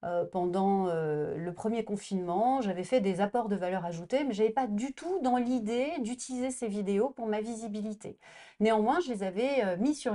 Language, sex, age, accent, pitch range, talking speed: French, female, 30-49, French, 200-255 Hz, 200 wpm